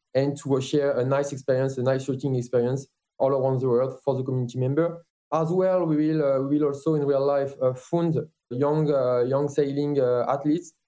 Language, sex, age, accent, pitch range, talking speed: English, male, 20-39, French, 130-155 Hz, 210 wpm